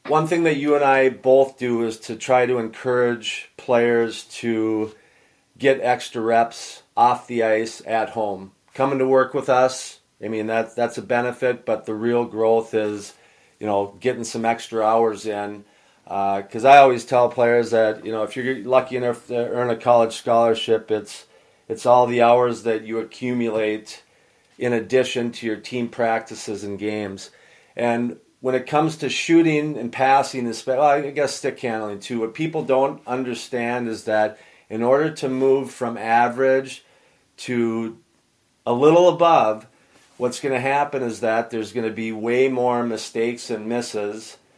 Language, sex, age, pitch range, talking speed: English, male, 30-49, 110-130 Hz, 170 wpm